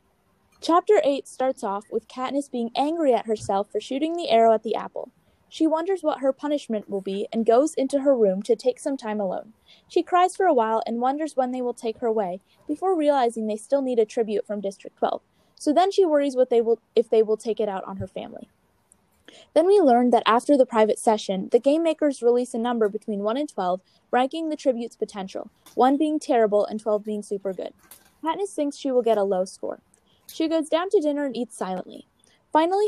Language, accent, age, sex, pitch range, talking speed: English, American, 20-39, female, 220-295 Hz, 220 wpm